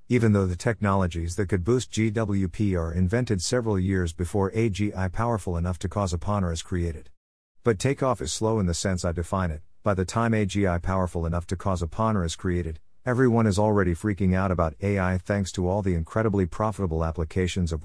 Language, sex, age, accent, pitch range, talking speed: English, male, 50-69, American, 85-110 Hz, 190 wpm